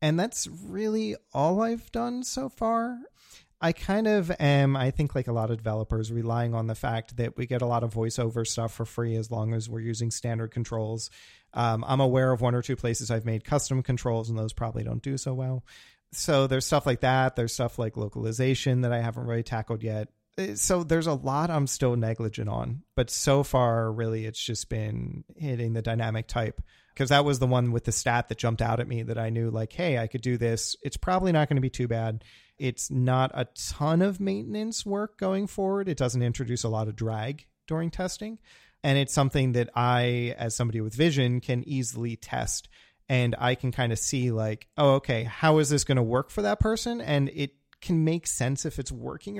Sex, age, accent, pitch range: male, 30-49, American, 115-145 Hz